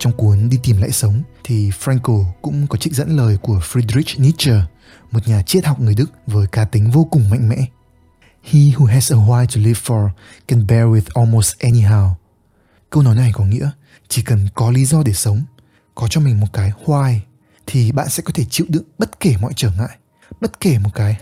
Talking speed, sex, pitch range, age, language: 220 wpm, male, 105-145 Hz, 20-39, Vietnamese